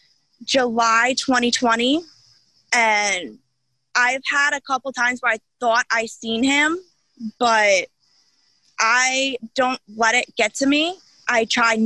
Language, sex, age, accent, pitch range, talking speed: English, female, 20-39, American, 225-255 Hz, 120 wpm